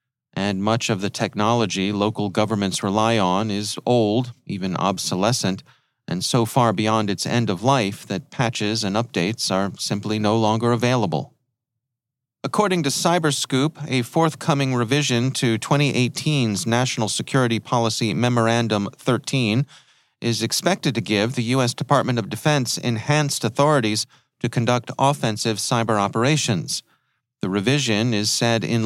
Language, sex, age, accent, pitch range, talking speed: English, male, 40-59, American, 110-130 Hz, 135 wpm